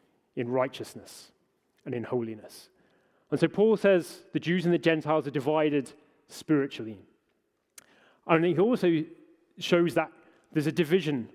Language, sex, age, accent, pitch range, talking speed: English, male, 30-49, British, 140-170 Hz, 130 wpm